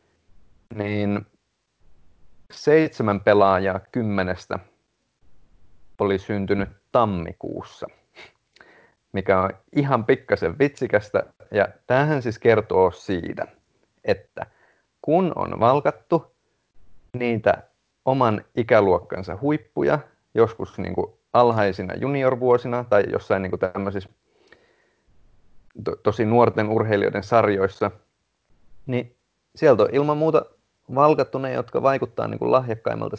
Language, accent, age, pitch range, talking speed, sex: Finnish, native, 30-49, 95-125 Hz, 90 wpm, male